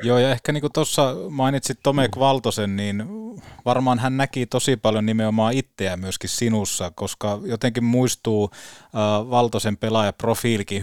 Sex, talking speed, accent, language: male, 140 wpm, native, Finnish